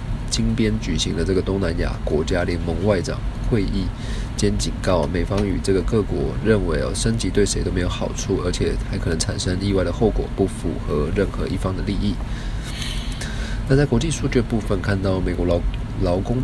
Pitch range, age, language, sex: 90-110 Hz, 20-39, Chinese, male